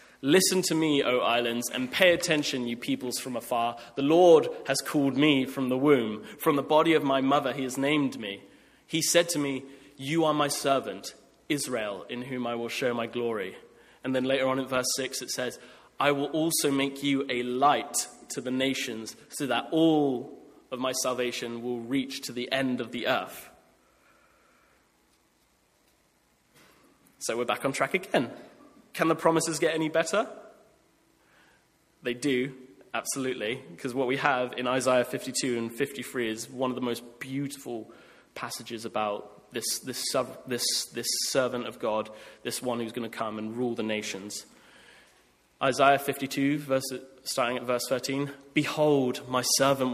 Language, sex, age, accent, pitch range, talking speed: English, male, 20-39, British, 120-145 Hz, 165 wpm